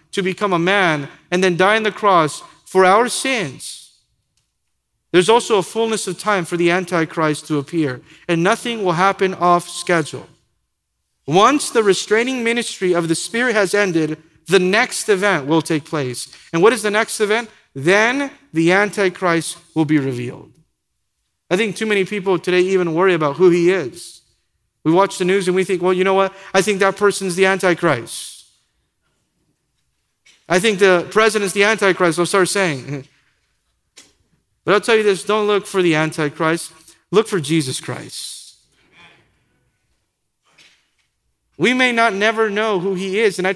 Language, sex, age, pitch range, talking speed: English, male, 50-69, 170-215 Hz, 165 wpm